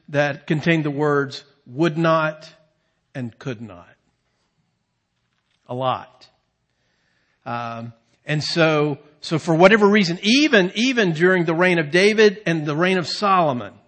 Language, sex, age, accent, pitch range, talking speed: English, male, 50-69, American, 155-200 Hz, 130 wpm